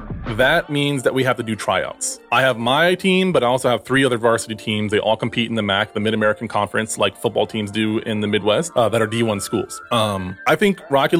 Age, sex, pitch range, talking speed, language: 20-39, male, 110-135 Hz, 240 wpm, English